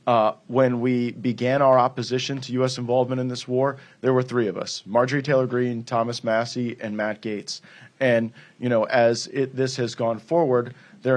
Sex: male